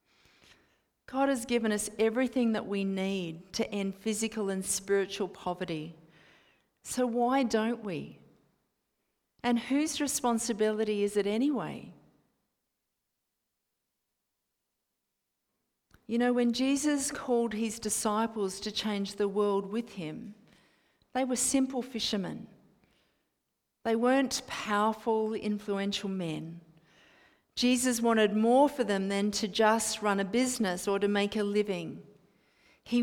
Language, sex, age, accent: English, female, 40-59, Australian